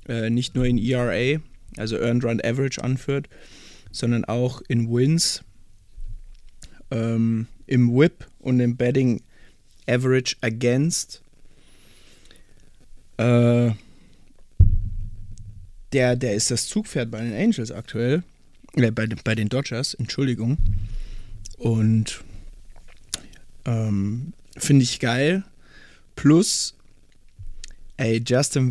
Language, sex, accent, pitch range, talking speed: German, male, German, 105-130 Hz, 95 wpm